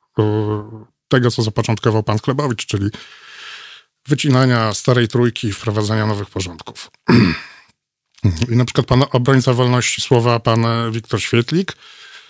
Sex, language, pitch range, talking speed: male, Polish, 110-135 Hz, 110 wpm